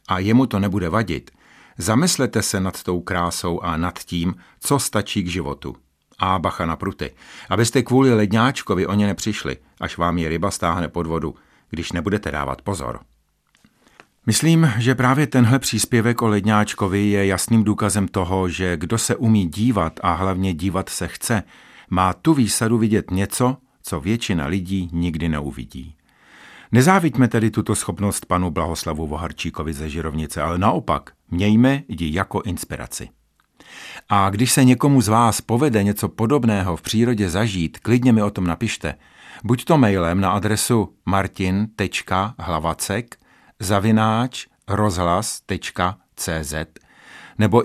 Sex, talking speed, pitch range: male, 135 wpm, 85-115 Hz